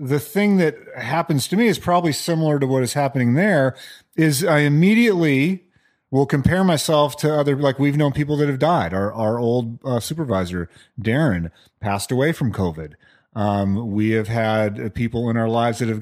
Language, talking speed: English, 185 wpm